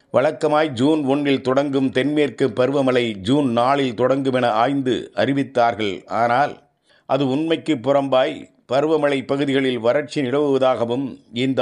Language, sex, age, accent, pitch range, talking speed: Tamil, male, 50-69, native, 125-145 Hz, 105 wpm